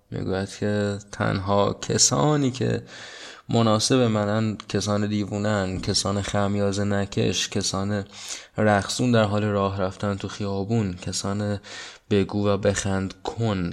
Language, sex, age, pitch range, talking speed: Persian, male, 20-39, 95-110 Hz, 110 wpm